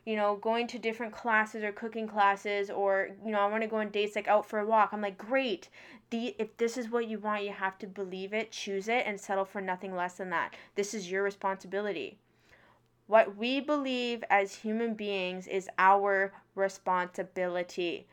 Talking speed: 195 wpm